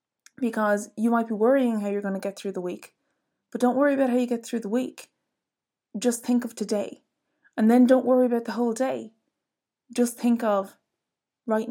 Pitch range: 200-260 Hz